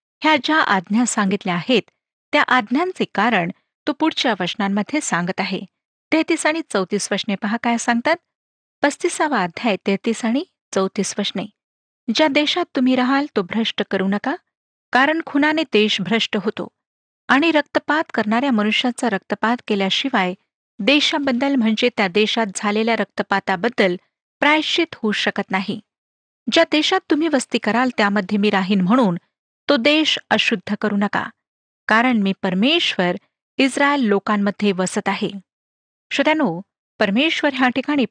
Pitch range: 205-285 Hz